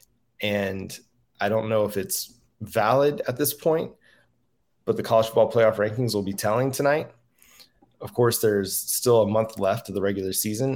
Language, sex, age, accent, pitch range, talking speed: English, male, 20-39, American, 100-115 Hz, 175 wpm